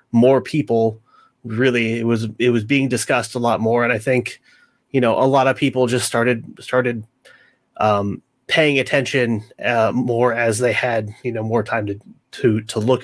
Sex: male